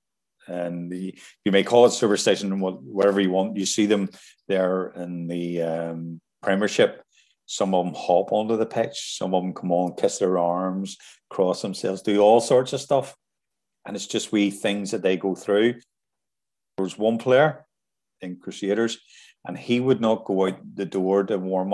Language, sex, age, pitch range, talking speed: English, male, 40-59, 95-115 Hz, 180 wpm